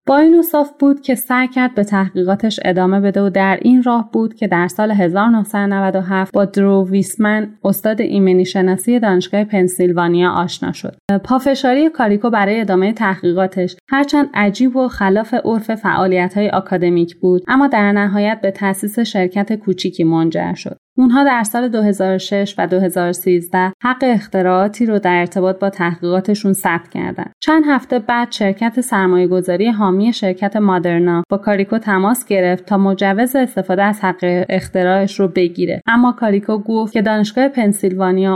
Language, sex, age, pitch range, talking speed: Persian, female, 30-49, 185-225 Hz, 145 wpm